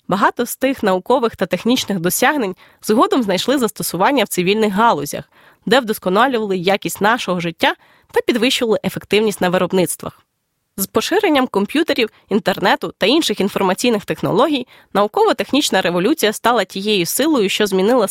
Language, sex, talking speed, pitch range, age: Ukrainian, female, 125 wpm, 190-250 Hz, 20-39